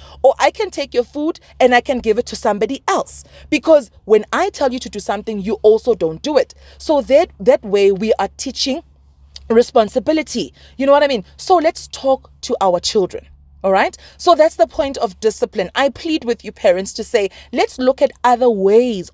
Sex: female